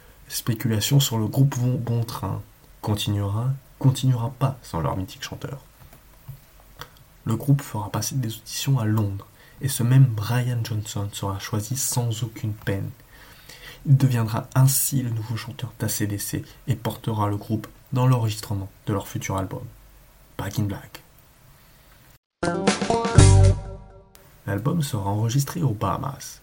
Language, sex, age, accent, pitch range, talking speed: French, male, 20-39, French, 105-135 Hz, 130 wpm